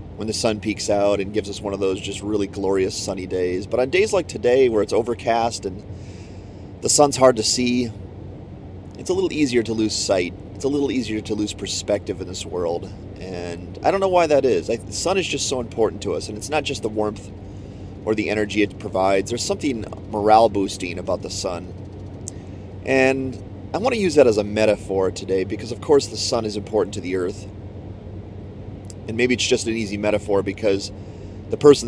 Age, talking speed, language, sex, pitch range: 30-49, 205 wpm, English, male, 100-110 Hz